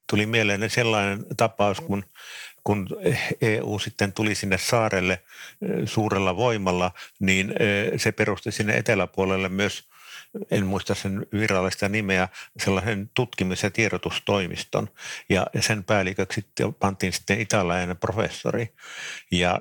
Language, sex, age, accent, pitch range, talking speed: Finnish, male, 50-69, native, 95-110 Hz, 110 wpm